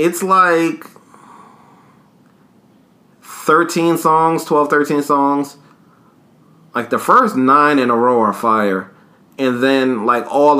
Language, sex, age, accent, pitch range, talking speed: English, male, 30-49, American, 115-140 Hz, 115 wpm